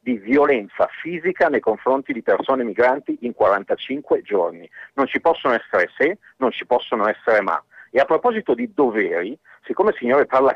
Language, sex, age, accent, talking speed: Italian, male, 50-69, native, 170 wpm